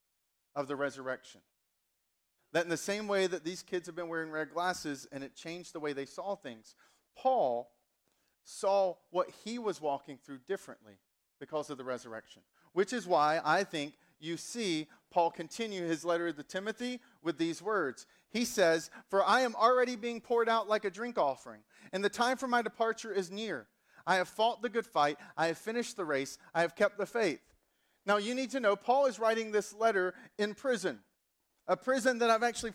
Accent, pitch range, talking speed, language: American, 165-225 Hz, 195 wpm, English